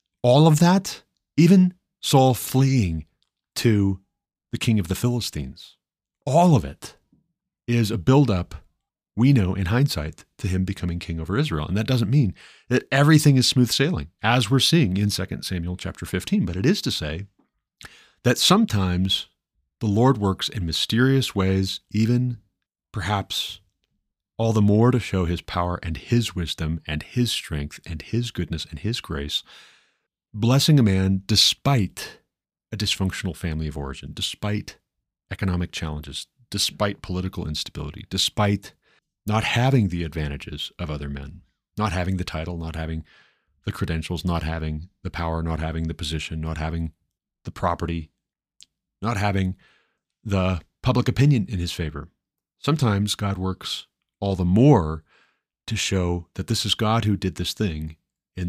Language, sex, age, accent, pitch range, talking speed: English, male, 40-59, American, 85-115 Hz, 150 wpm